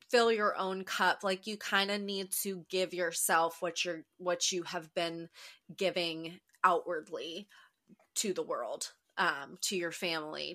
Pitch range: 170-215 Hz